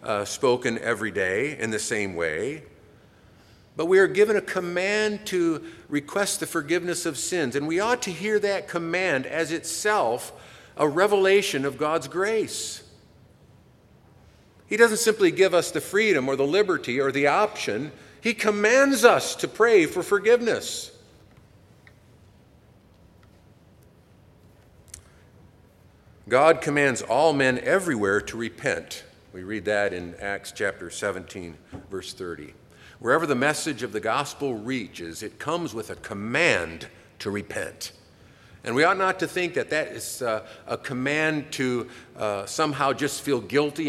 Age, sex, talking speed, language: 50-69, male, 140 wpm, English